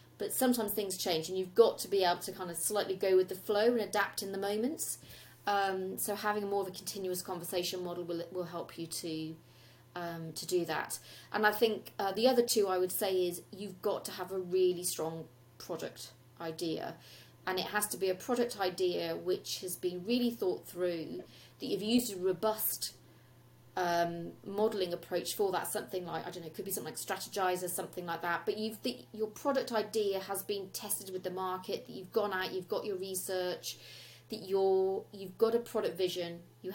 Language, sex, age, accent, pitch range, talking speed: English, female, 30-49, British, 170-210 Hz, 205 wpm